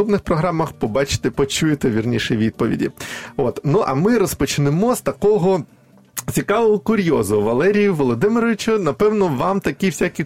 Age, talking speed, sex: 20-39, 130 wpm, male